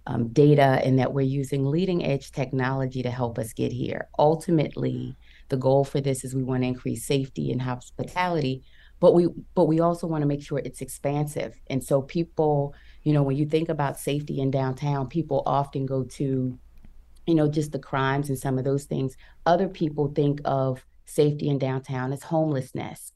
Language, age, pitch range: English, 30-49, 130-150 Hz